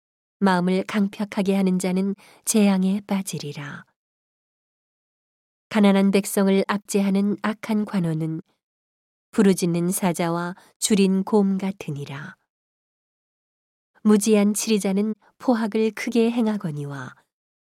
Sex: female